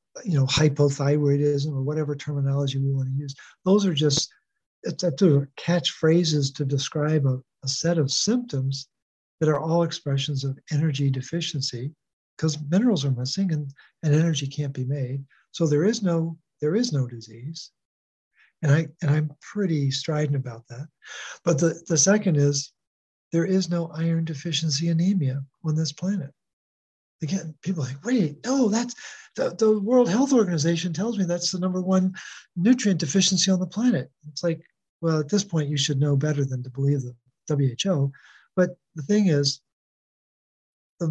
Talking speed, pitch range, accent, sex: 165 wpm, 140-190 Hz, American, male